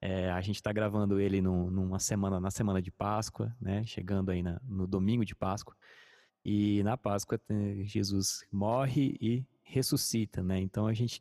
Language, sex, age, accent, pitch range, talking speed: Portuguese, male, 20-39, Brazilian, 100-120 Hz, 145 wpm